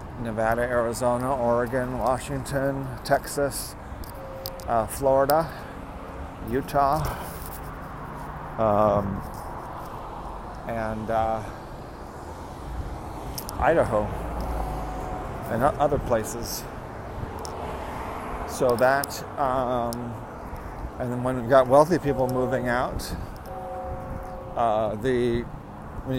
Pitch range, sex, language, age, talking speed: 110-135 Hz, male, English, 40-59, 70 wpm